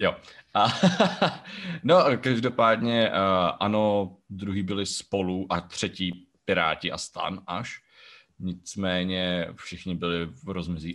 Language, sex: Czech, male